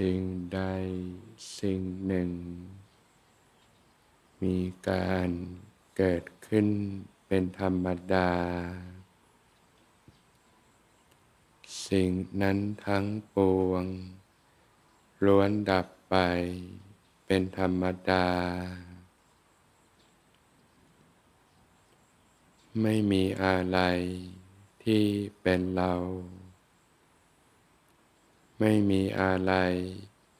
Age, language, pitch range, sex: 60-79, Thai, 90-100 Hz, male